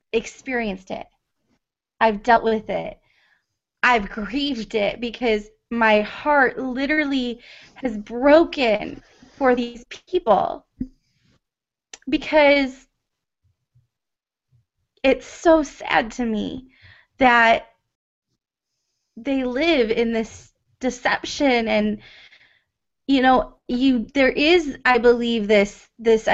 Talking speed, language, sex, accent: 90 wpm, English, female, American